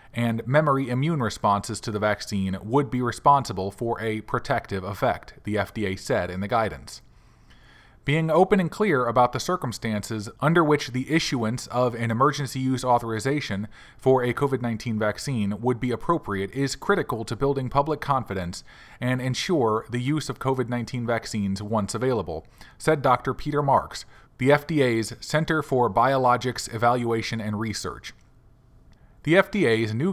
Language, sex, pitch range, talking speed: English, male, 110-140 Hz, 145 wpm